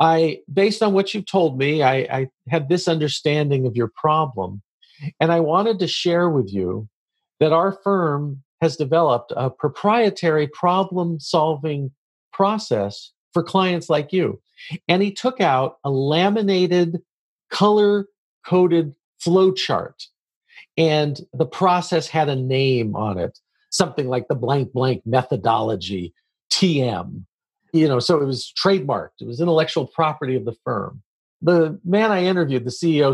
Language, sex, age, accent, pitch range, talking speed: English, male, 50-69, American, 135-185 Hz, 140 wpm